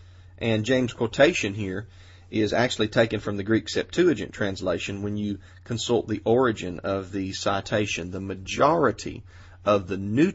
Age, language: 40-59, English